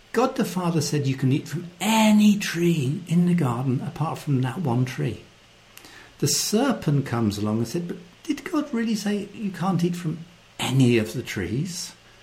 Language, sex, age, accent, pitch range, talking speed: English, male, 60-79, British, 130-195 Hz, 180 wpm